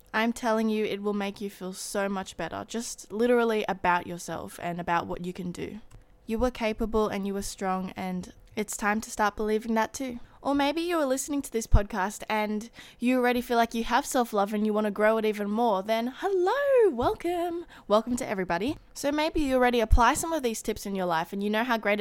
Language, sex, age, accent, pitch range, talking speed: English, female, 20-39, Australian, 200-245 Hz, 225 wpm